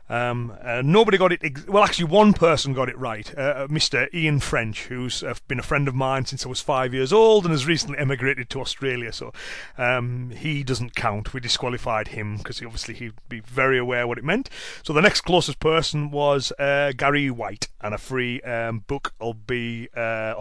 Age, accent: 30-49, British